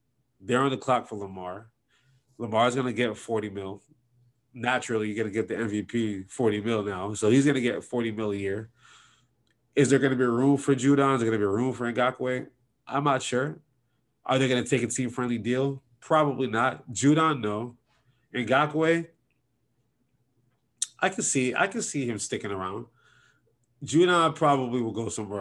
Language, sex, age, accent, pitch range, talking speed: English, male, 20-39, American, 115-140 Hz, 170 wpm